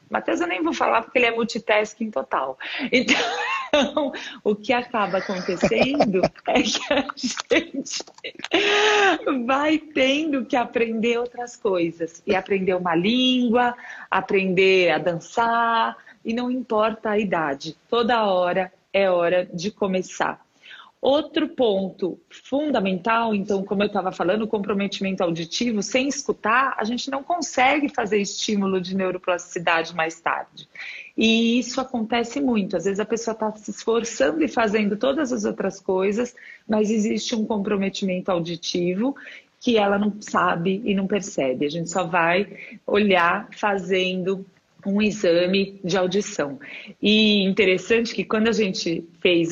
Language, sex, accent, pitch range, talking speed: Portuguese, female, Brazilian, 180-235 Hz, 135 wpm